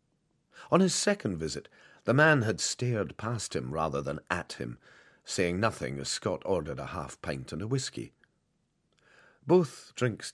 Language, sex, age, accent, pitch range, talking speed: English, male, 40-59, British, 75-125 Hz, 150 wpm